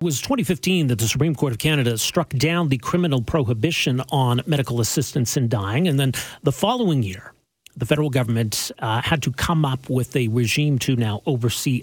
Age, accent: 40-59, American